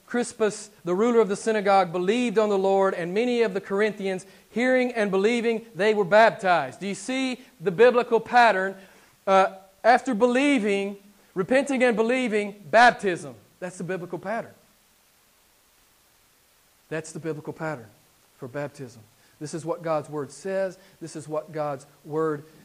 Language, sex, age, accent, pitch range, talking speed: English, male, 40-59, American, 145-195 Hz, 145 wpm